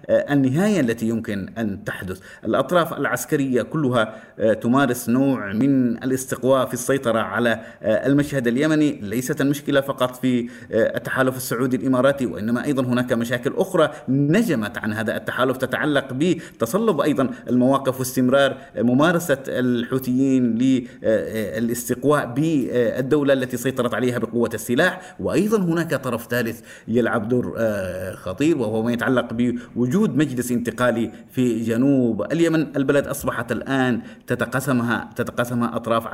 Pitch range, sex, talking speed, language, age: 120-145 Hz, male, 115 wpm, Arabic, 30-49